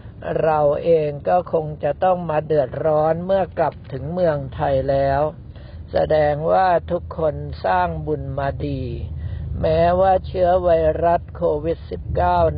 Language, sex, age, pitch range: Thai, male, 60-79, 140-170 Hz